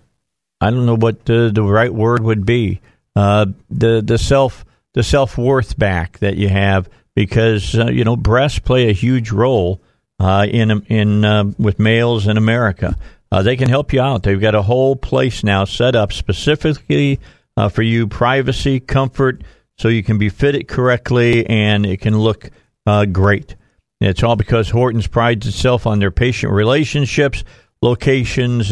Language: English